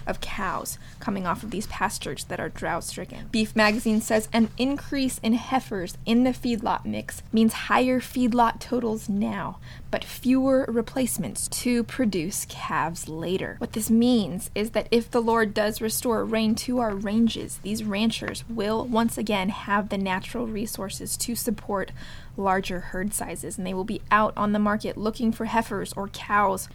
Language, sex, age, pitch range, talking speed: English, female, 20-39, 205-230 Hz, 165 wpm